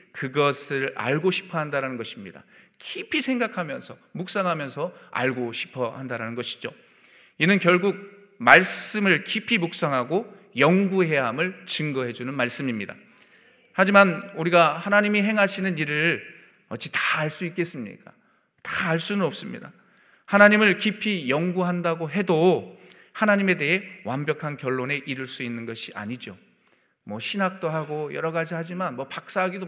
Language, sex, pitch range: Korean, male, 130-185 Hz